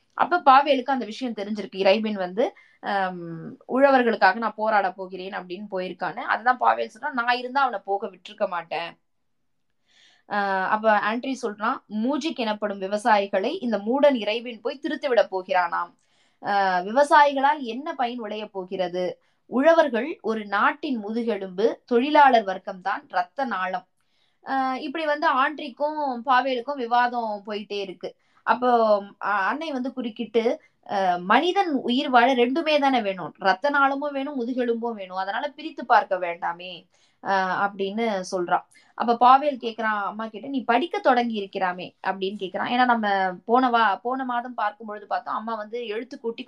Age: 20-39